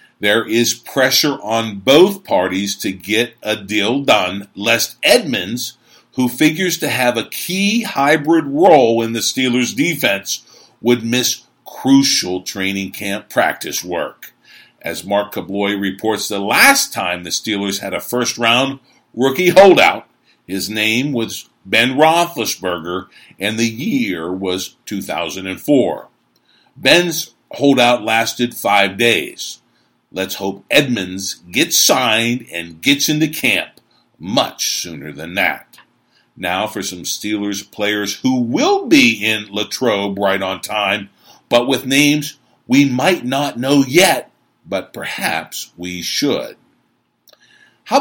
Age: 50-69